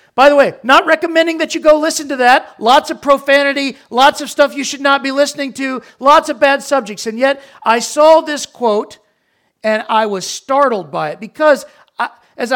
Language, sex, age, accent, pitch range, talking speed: English, male, 40-59, American, 180-255 Hz, 195 wpm